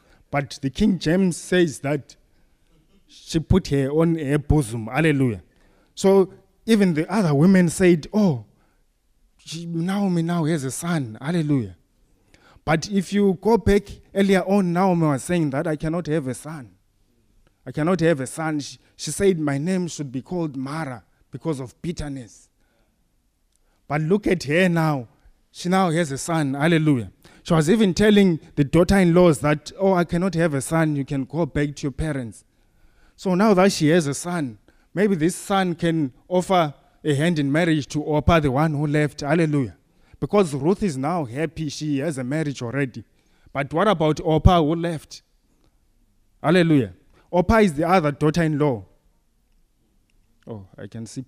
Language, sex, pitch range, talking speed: English, male, 135-175 Hz, 165 wpm